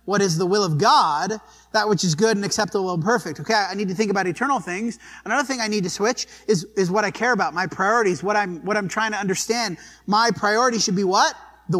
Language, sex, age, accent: English, male, 30-49, American